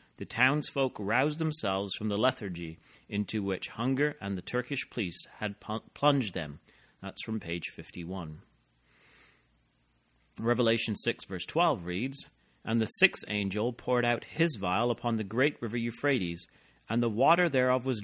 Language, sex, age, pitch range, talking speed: English, male, 30-49, 105-135 Hz, 145 wpm